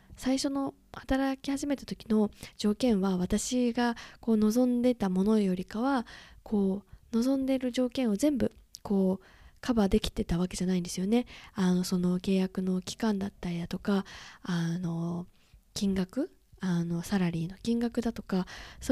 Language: Japanese